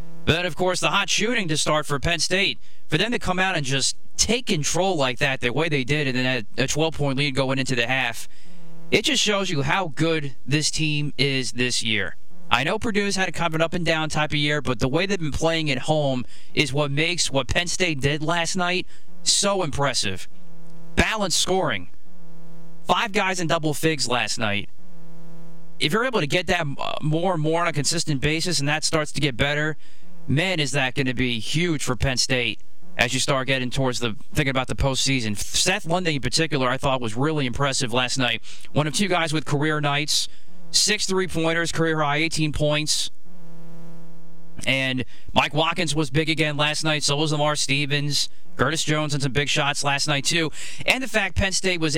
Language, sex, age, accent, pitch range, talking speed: English, male, 40-59, American, 135-170 Hz, 200 wpm